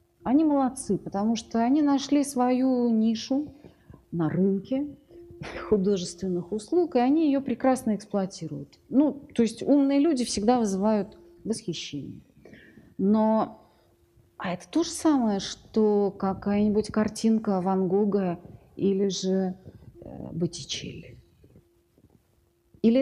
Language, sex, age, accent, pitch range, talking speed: Russian, female, 40-59, native, 185-245 Hz, 105 wpm